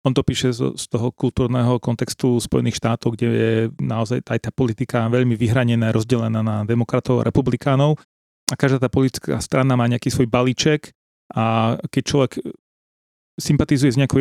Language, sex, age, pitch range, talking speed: Slovak, male, 30-49, 120-140 Hz, 155 wpm